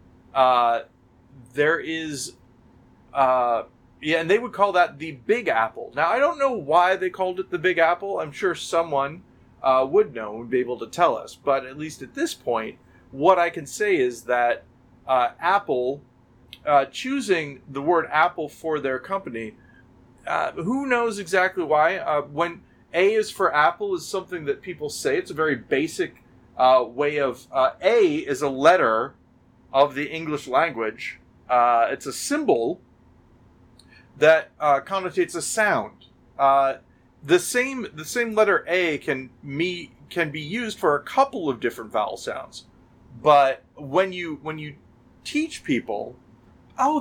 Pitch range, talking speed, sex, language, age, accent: 125-200 Hz, 160 wpm, male, English, 30-49, American